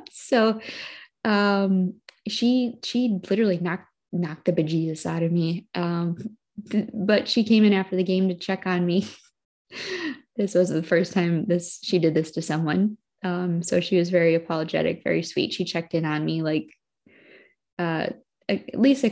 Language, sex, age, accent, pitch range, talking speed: English, female, 20-39, American, 165-195 Hz, 165 wpm